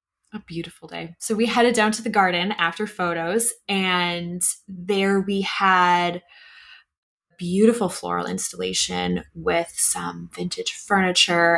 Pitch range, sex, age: 175-225 Hz, female, 20-39